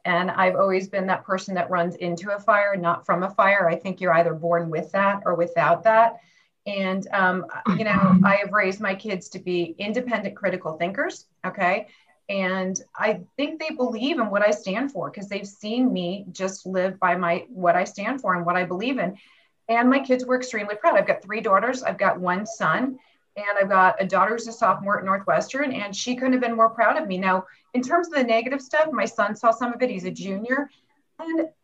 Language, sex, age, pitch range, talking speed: English, female, 30-49, 185-255 Hz, 220 wpm